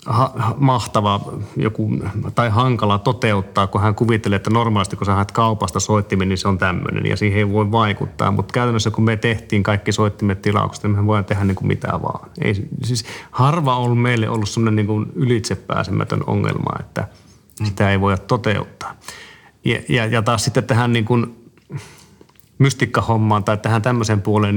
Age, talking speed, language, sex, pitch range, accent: 30-49, 160 wpm, Finnish, male, 100-120 Hz, native